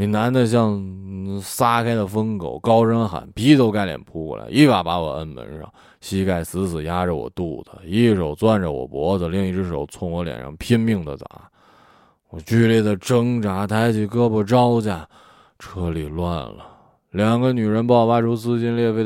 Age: 20-39